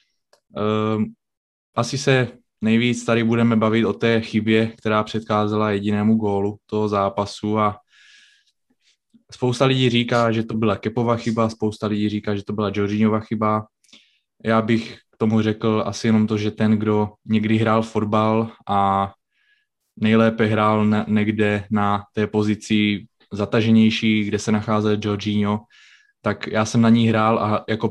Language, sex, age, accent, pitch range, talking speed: Czech, male, 20-39, native, 105-115 Hz, 145 wpm